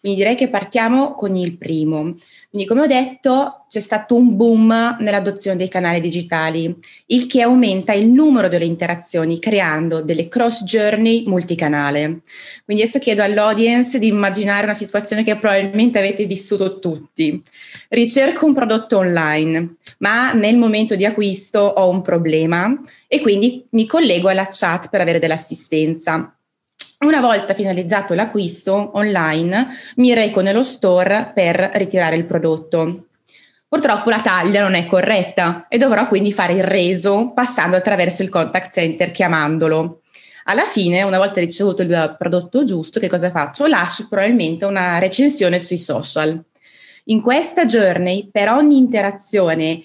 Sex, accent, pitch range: female, native, 175-230 Hz